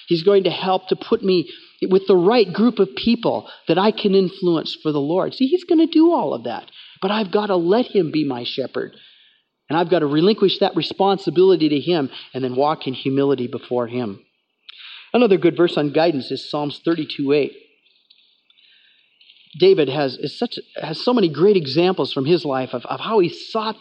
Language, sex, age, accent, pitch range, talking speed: English, male, 40-59, American, 150-210 Hz, 200 wpm